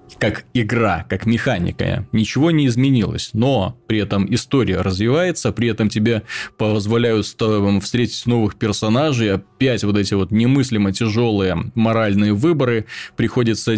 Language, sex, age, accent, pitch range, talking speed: Russian, male, 20-39, native, 105-130 Hz, 120 wpm